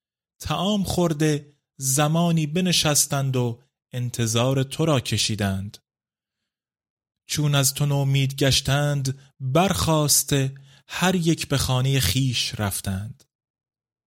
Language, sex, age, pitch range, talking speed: Persian, male, 30-49, 120-145 Hz, 90 wpm